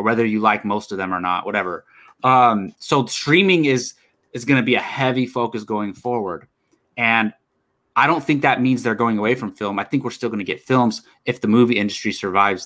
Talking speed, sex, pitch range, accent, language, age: 220 wpm, male, 105-135 Hz, American, English, 20-39